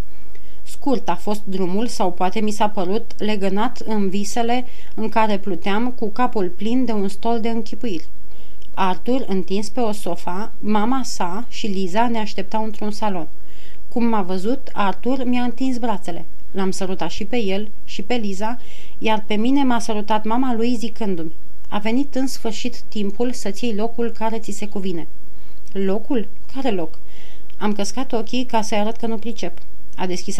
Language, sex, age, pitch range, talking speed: Romanian, female, 30-49, 195-230 Hz, 170 wpm